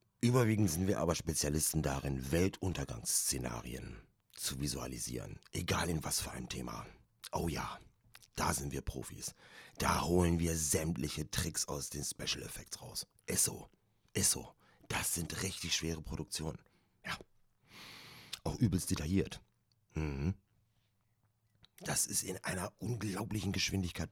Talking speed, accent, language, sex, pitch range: 125 wpm, German, German, male, 80-100 Hz